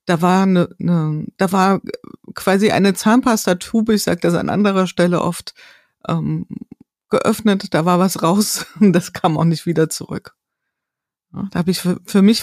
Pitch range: 165-195 Hz